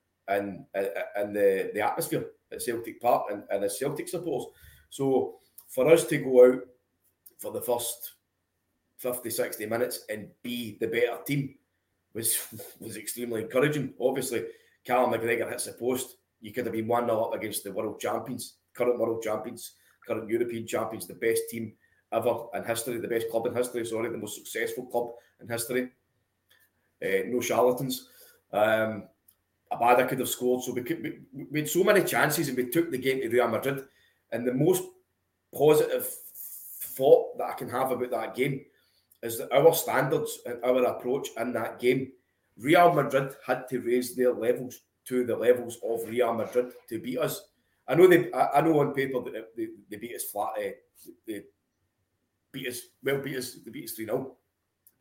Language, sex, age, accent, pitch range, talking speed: English, male, 20-39, British, 115-160 Hz, 180 wpm